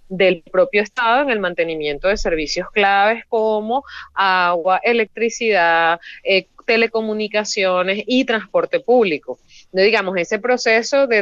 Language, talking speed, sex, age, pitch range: Spanish, 110 wpm, female, 30-49, 180-230 Hz